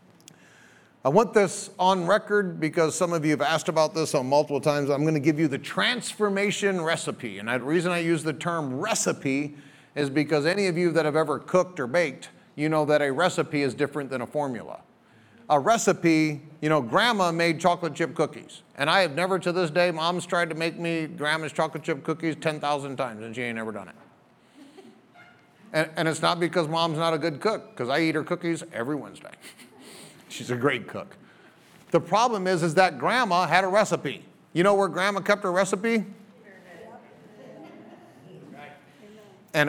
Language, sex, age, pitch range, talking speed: English, male, 40-59, 155-205 Hz, 185 wpm